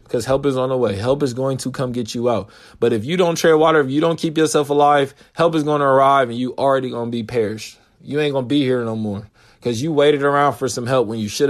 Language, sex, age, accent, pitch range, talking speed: English, male, 20-39, American, 115-150 Hz, 290 wpm